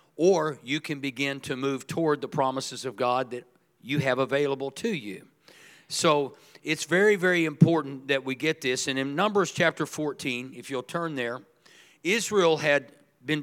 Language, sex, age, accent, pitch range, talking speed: English, male, 50-69, American, 135-165 Hz, 170 wpm